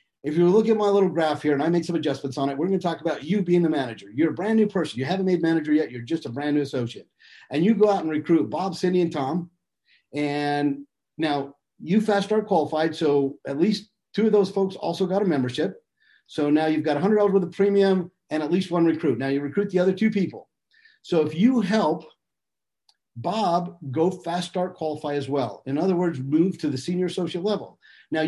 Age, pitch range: 50-69, 150-200 Hz